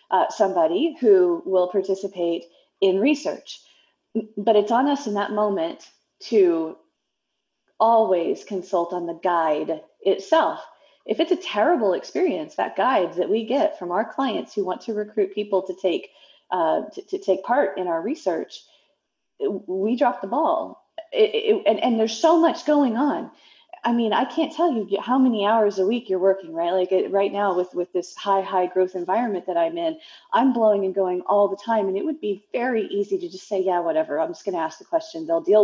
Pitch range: 185-290 Hz